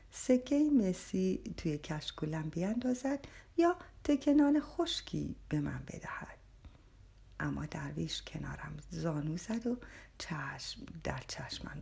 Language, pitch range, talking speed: Persian, 145-240 Hz, 100 wpm